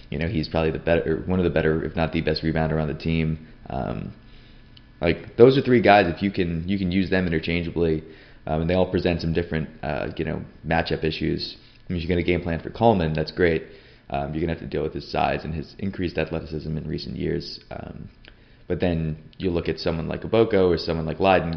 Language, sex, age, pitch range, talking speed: English, male, 20-39, 80-95 Hz, 235 wpm